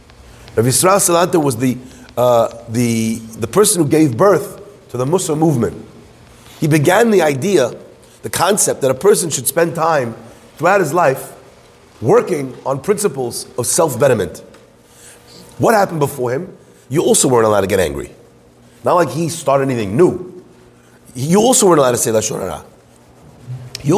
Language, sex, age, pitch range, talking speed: English, male, 30-49, 130-195 Hz, 150 wpm